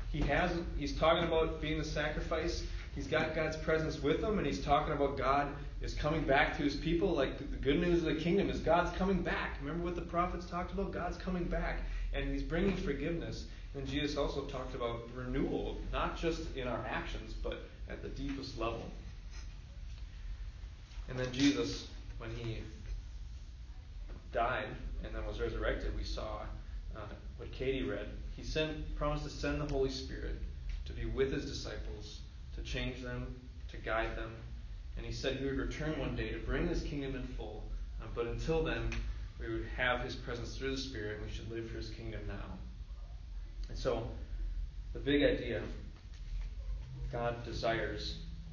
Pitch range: 95-140 Hz